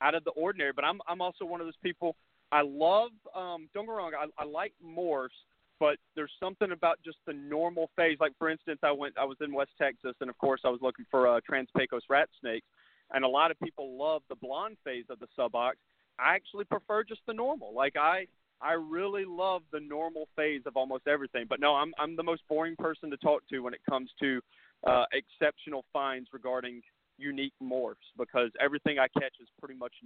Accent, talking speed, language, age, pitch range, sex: American, 215 wpm, English, 40-59, 130-160 Hz, male